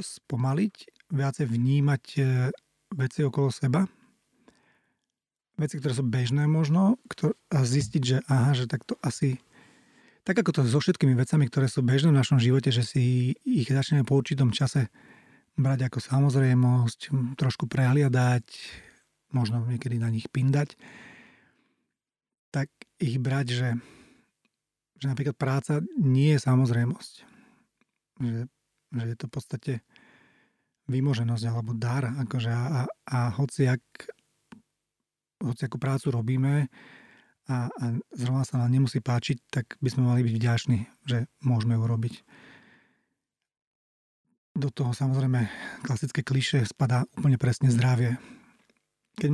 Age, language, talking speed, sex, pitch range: 40-59, Slovak, 125 wpm, male, 125-145 Hz